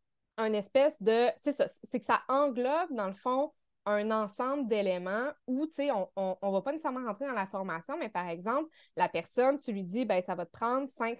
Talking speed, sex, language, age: 230 wpm, female, French, 20-39